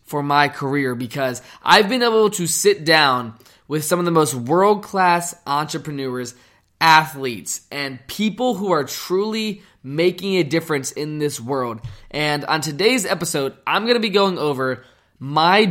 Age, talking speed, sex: 20-39, 150 wpm, male